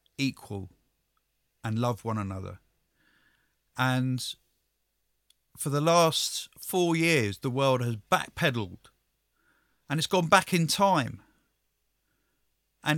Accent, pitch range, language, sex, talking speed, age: British, 115-155 Hz, English, male, 100 wpm, 40-59